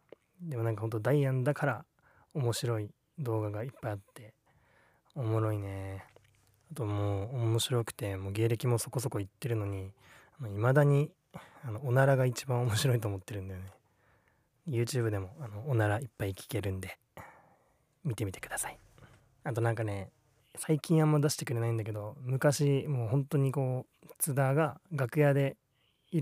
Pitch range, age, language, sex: 110-145 Hz, 20-39, Japanese, male